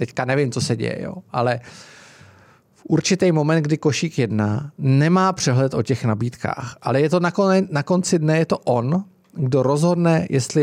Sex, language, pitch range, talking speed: male, Czech, 115-150 Hz, 170 wpm